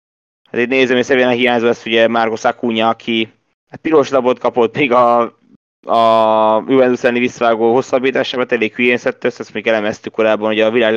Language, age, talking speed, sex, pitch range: Hungarian, 20-39, 165 wpm, male, 105-120 Hz